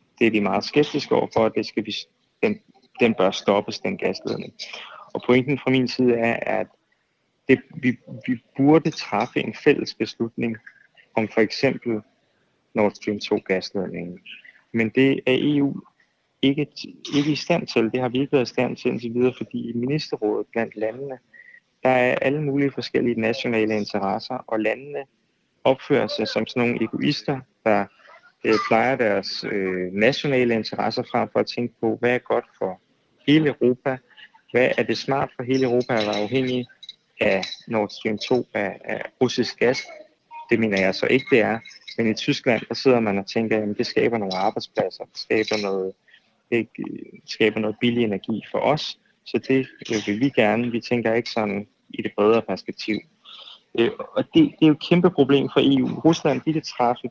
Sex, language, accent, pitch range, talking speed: male, Danish, native, 110-135 Hz, 175 wpm